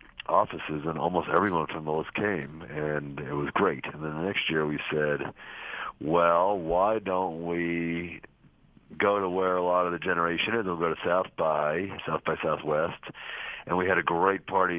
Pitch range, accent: 80-95 Hz, American